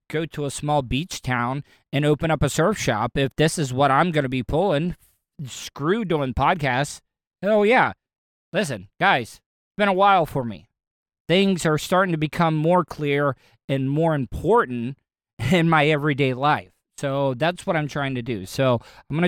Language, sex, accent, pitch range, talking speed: English, male, American, 125-165 Hz, 180 wpm